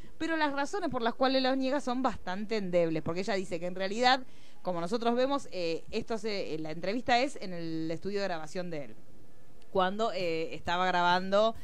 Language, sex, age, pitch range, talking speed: Spanish, female, 20-39, 170-230 Hz, 195 wpm